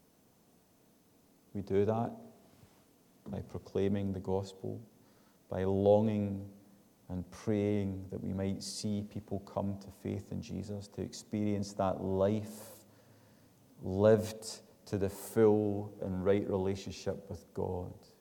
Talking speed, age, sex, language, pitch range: 110 wpm, 30-49, male, English, 100-110 Hz